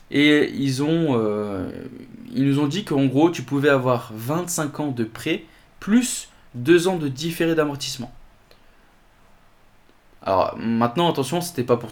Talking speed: 145 wpm